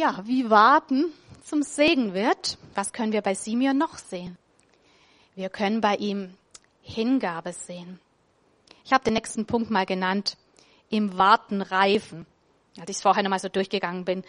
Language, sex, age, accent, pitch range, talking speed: German, female, 30-49, German, 195-255 Hz, 160 wpm